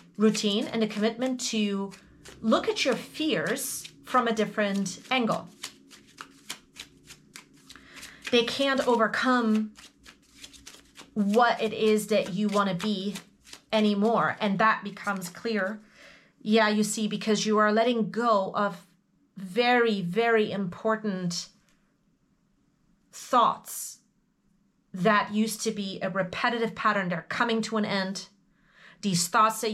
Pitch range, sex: 200-235 Hz, female